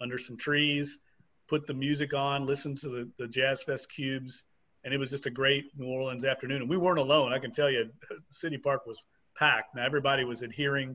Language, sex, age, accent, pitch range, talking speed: English, male, 40-59, American, 130-150 Hz, 215 wpm